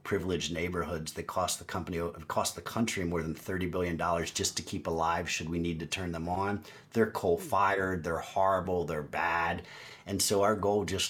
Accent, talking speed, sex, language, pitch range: American, 200 wpm, male, English, 90-110 Hz